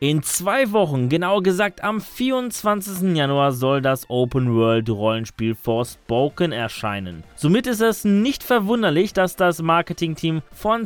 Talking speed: 120 wpm